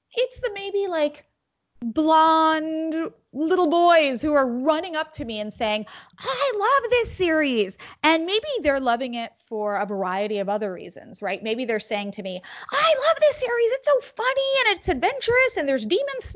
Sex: female